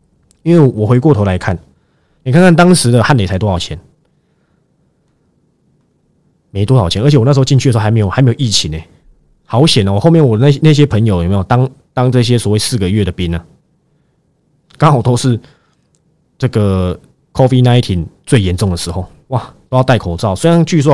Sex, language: male, Chinese